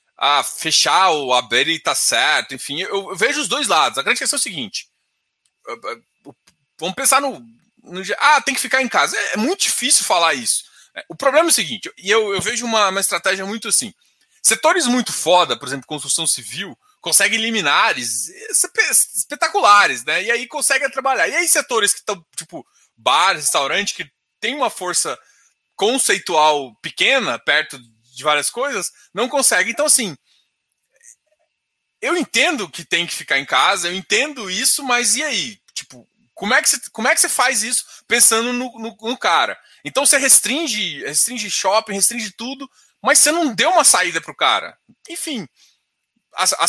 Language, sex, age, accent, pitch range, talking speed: Portuguese, male, 20-39, Brazilian, 195-280 Hz, 170 wpm